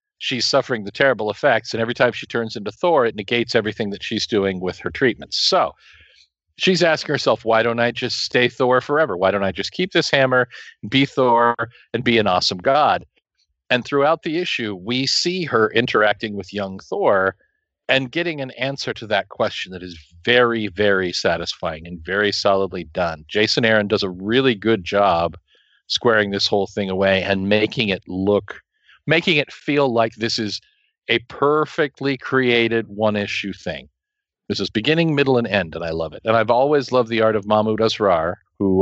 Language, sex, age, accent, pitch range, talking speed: English, male, 50-69, American, 100-130 Hz, 185 wpm